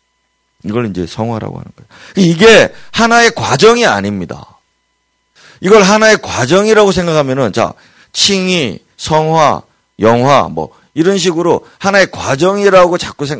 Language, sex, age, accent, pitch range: Korean, male, 40-59, native, 115-185 Hz